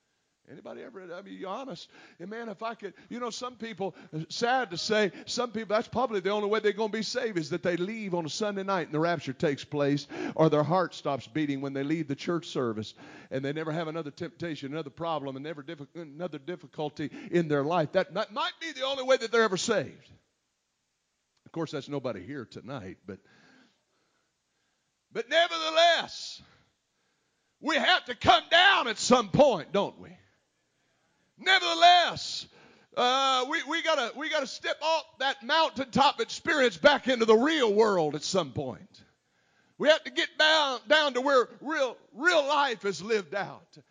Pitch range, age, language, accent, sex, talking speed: 175-275 Hz, 50-69, English, American, male, 185 wpm